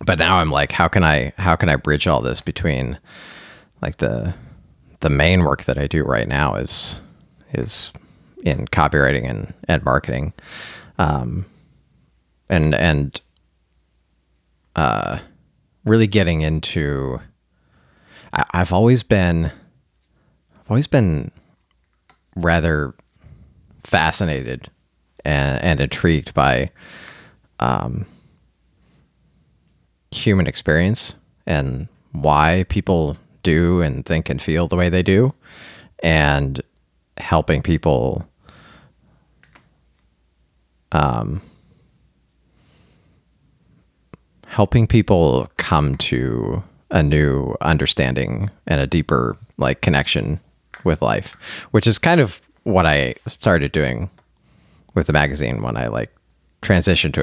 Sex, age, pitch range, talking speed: male, 30-49, 70-90 Hz, 105 wpm